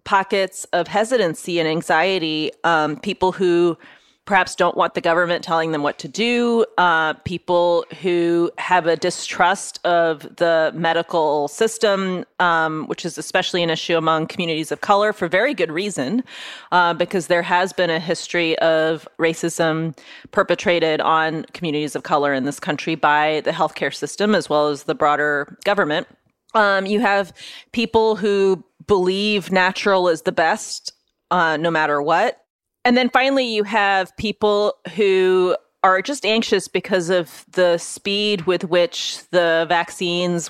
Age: 30-49